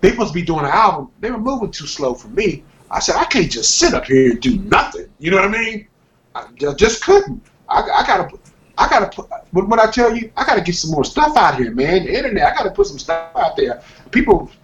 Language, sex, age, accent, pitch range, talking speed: English, male, 30-49, American, 155-250 Hz, 260 wpm